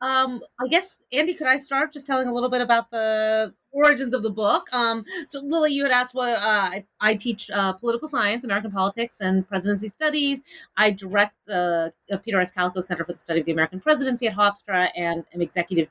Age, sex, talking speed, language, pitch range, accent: 30-49, female, 215 wpm, English, 185-250 Hz, American